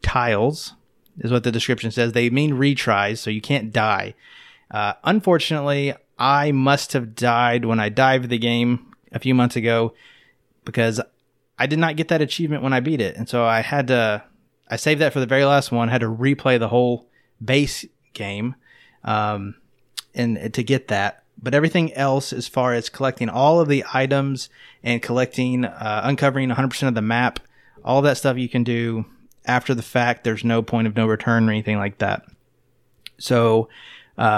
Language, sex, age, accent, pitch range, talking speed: English, male, 30-49, American, 115-140 Hz, 185 wpm